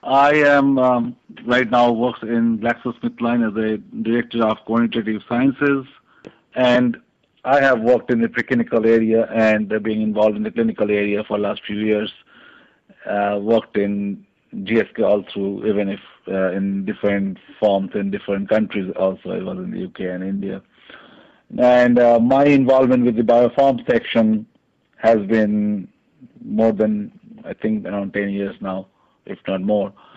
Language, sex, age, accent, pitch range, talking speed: English, male, 50-69, Indian, 100-120 Hz, 155 wpm